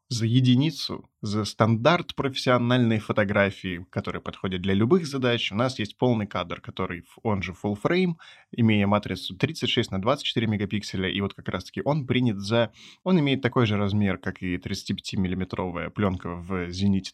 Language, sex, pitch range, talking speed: Russian, male, 100-130 Hz, 160 wpm